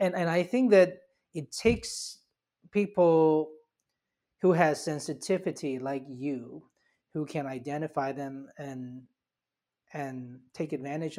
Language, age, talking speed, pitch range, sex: English, 30-49, 115 wpm, 135-165 Hz, male